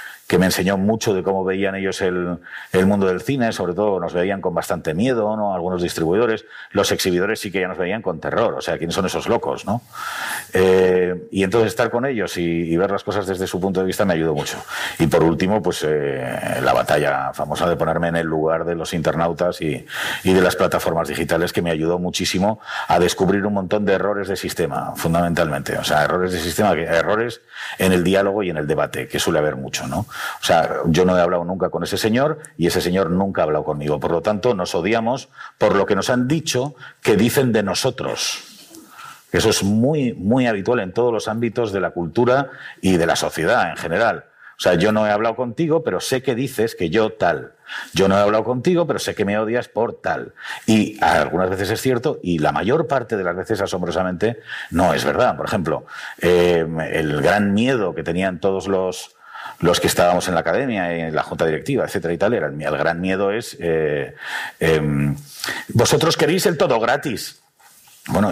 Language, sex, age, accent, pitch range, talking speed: Spanish, male, 50-69, Spanish, 85-105 Hz, 210 wpm